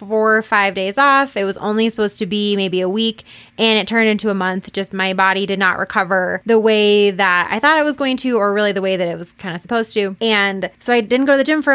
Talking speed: 280 wpm